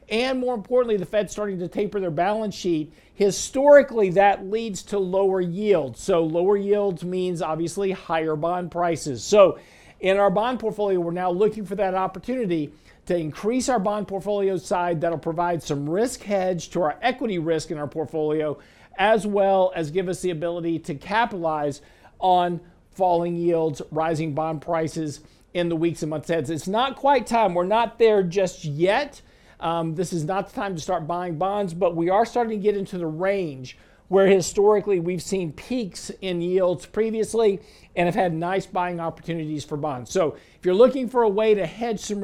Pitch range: 165-205 Hz